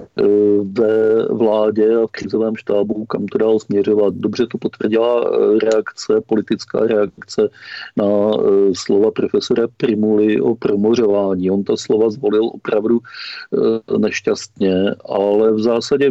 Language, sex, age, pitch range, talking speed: Czech, male, 40-59, 110-120 Hz, 115 wpm